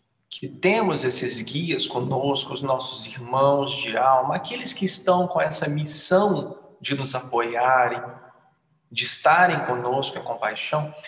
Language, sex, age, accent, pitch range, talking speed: Portuguese, male, 40-59, Brazilian, 140-185 Hz, 130 wpm